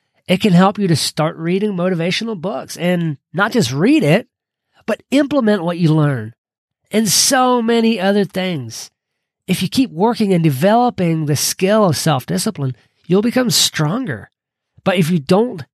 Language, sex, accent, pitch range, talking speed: English, male, American, 150-210 Hz, 155 wpm